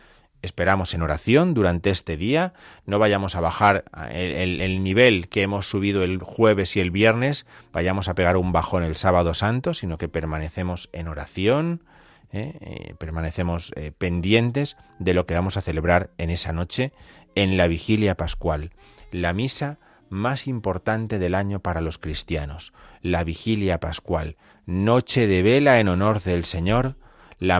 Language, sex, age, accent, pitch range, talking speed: Spanish, male, 30-49, Spanish, 85-115 Hz, 155 wpm